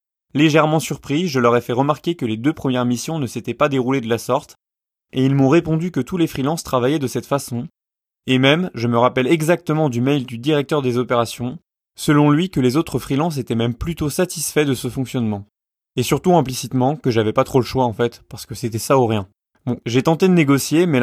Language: French